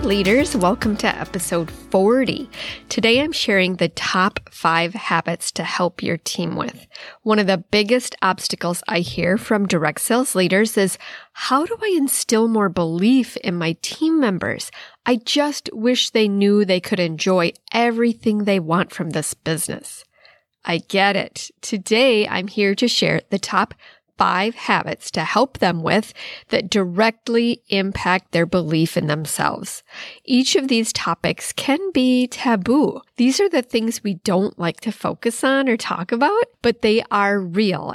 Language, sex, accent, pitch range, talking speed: English, female, American, 185-235 Hz, 160 wpm